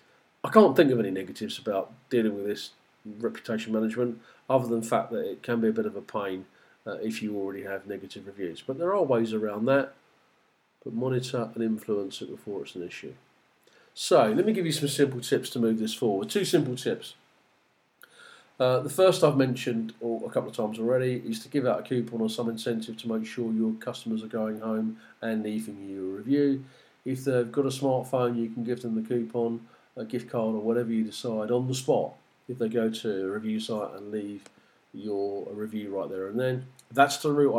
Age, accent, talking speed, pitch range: 40-59, British, 210 wpm, 110-130 Hz